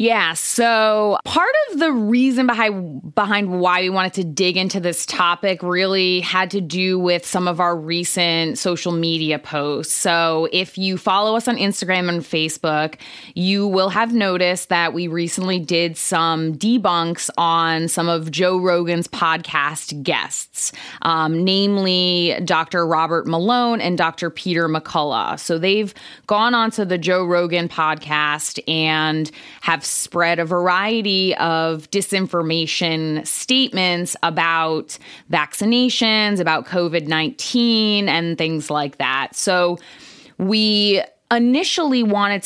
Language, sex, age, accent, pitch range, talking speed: English, female, 20-39, American, 165-200 Hz, 130 wpm